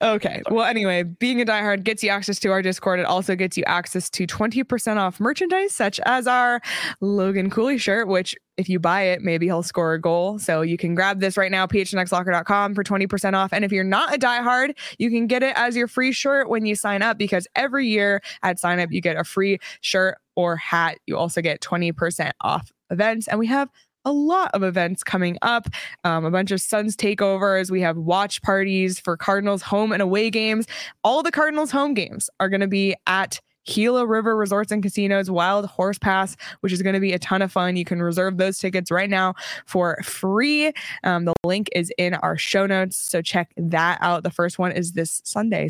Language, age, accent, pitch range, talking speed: English, 20-39, American, 175-220 Hz, 215 wpm